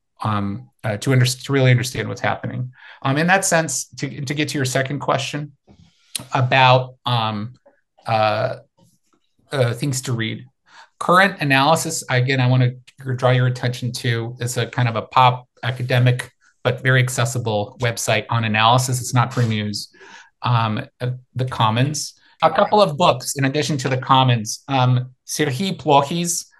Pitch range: 120-145 Hz